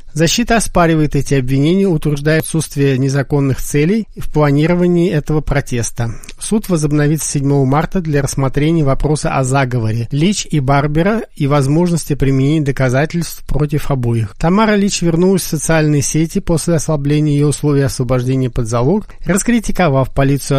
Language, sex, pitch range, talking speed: Russian, male, 140-175 Hz, 130 wpm